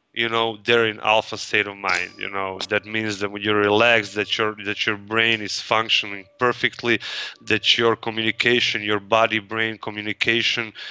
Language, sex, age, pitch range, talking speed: English, male, 30-49, 105-120 Hz, 170 wpm